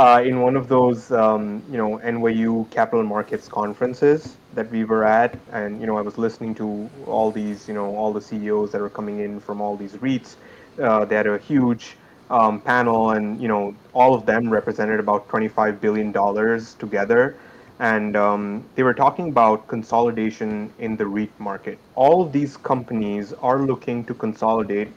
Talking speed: 185 wpm